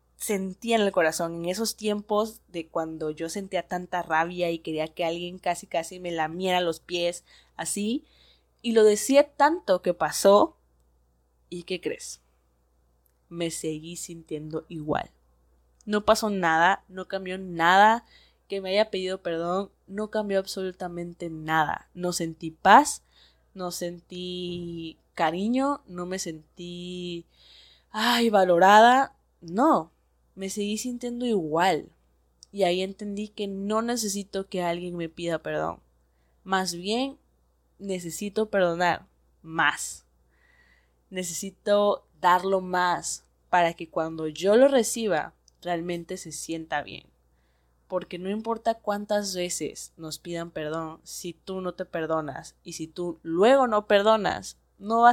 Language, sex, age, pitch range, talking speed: Spanish, female, 20-39, 160-205 Hz, 130 wpm